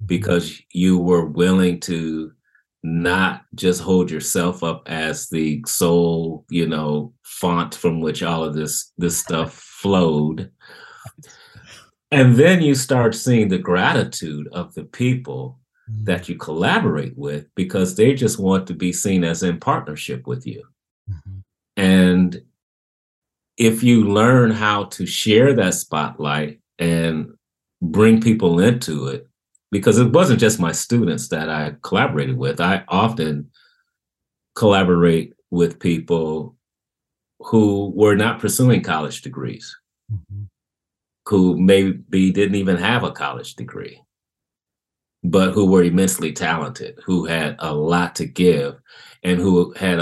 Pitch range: 80-100 Hz